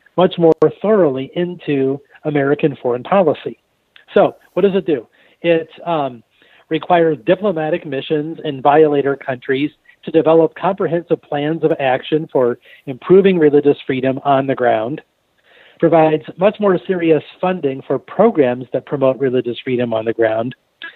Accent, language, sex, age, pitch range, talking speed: American, English, male, 40-59, 130-170 Hz, 135 wpm